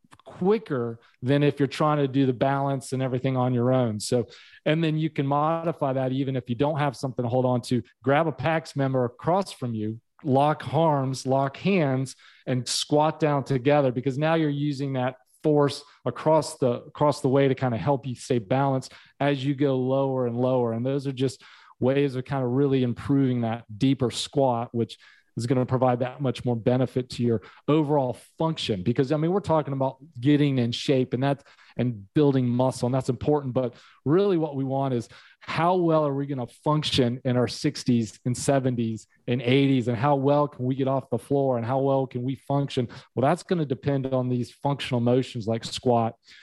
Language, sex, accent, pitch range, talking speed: English, male, American, 125-145 Hz, 205 wpm